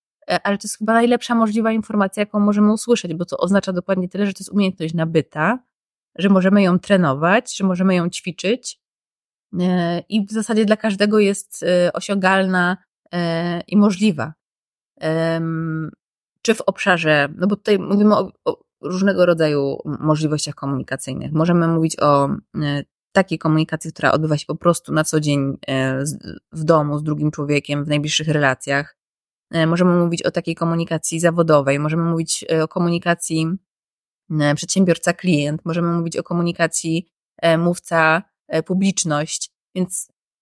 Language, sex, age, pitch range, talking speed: Polish, female, 20-39, 155-195 Hz, 130 wpm